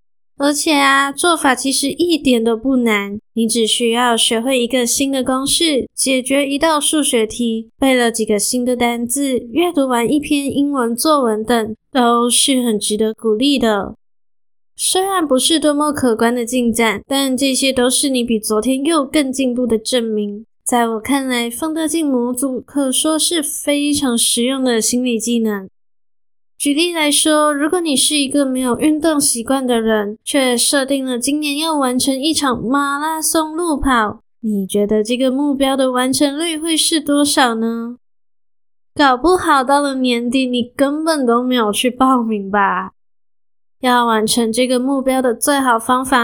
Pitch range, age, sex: 235-285 Hz, 10-29, female